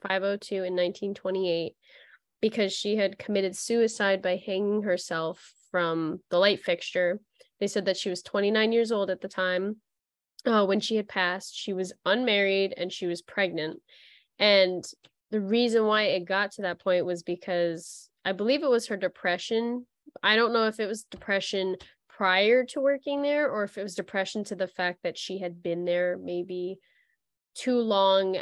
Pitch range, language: 185-215 Hz, English